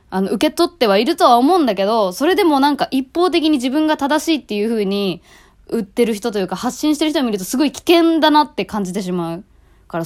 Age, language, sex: 20-39, Japanese, female